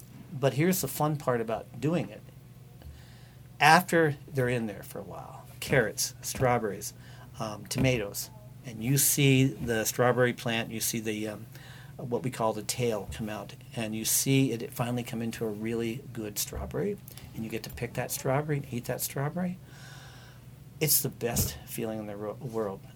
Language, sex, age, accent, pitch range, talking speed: English, male, 50-69, American, 115-140 Hz, 170 wpm